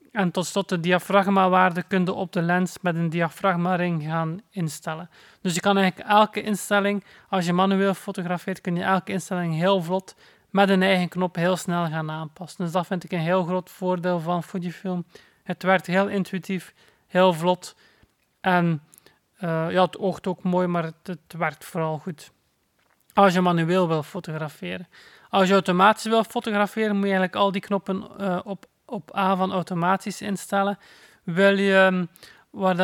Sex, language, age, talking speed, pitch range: male, Dutch, 30-49, 170 wpm, 175-195 Hz